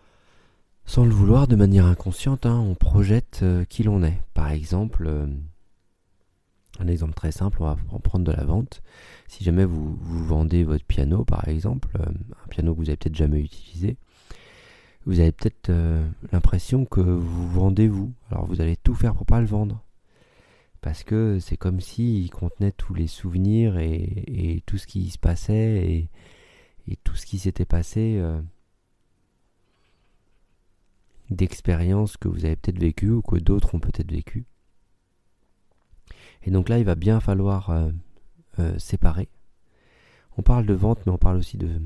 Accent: French